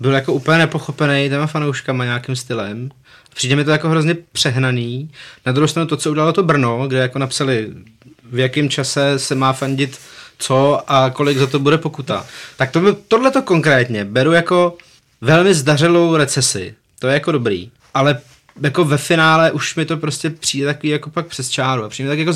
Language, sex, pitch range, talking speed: Czech, male, 130-160 Hz, 185 wpm